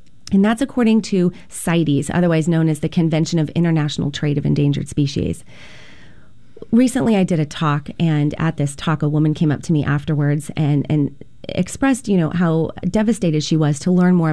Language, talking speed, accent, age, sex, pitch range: English, 185 wpm, American, 30-49, female, 155-200 Hz